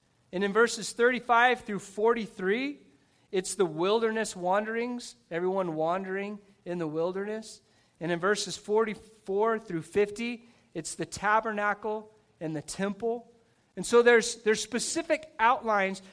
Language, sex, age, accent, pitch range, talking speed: English, male, 40-59, American, 180-230 Hz, 125 wpm